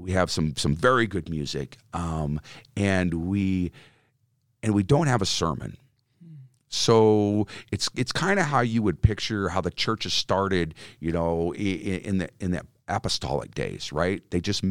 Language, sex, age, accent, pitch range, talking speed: English, male, 50-69, American, 90-115 Hz, 165 wpm